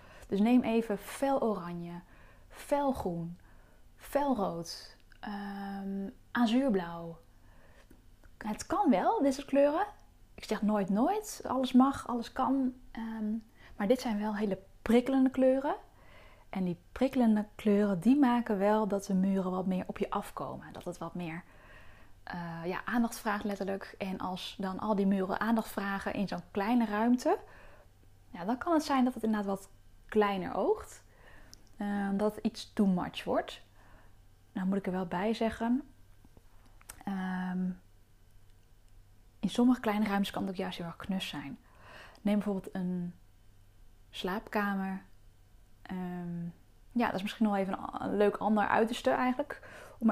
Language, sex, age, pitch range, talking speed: Dutch, female, 10-29, 165-220 Hz, 150 wpm